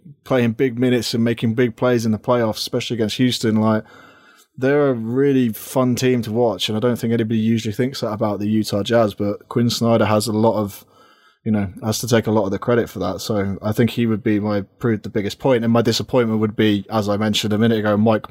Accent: British